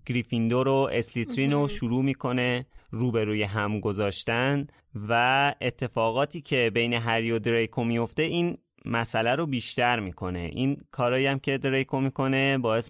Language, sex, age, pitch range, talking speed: Persian, male, 30-49, 110-135 Hz, 125 wpm